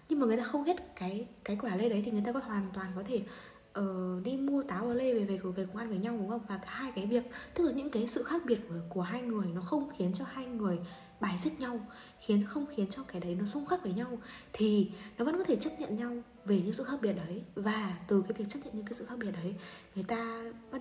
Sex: female